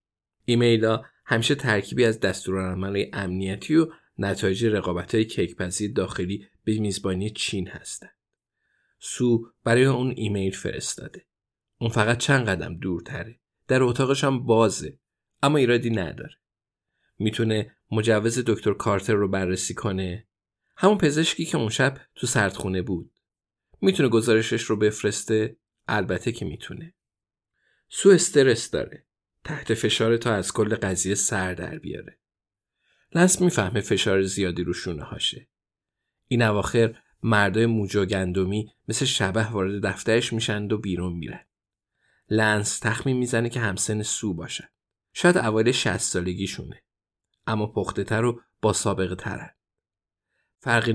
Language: Persian